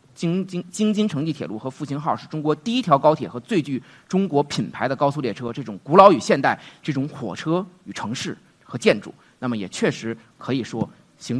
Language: Chinese